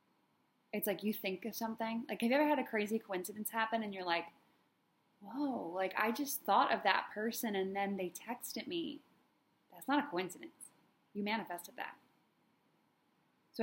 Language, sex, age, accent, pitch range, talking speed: English, female, 10-29, American, 195-265 Hz, 170 wpm